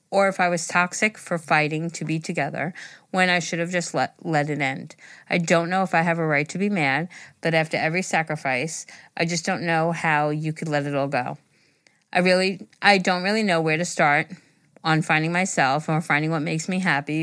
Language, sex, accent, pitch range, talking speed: English, female, American, 155-185 Hz, 220 wpm